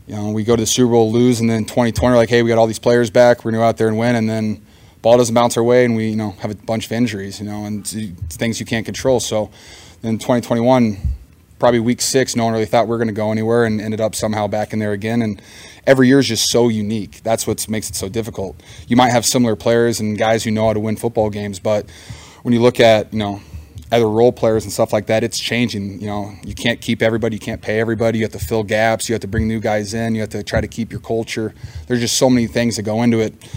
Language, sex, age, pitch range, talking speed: English, male, 20-39, 105-115 Hz, 280 wpm